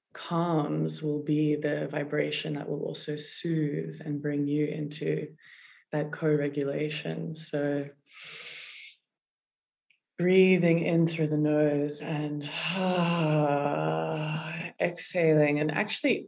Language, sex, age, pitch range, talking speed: English, female, 20-39, 145-165 Hz, 95 wpm